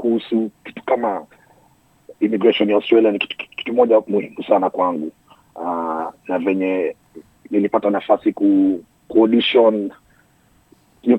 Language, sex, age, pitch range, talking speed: Swahili, male, 40-59, 100-125 Hz, 95 wpm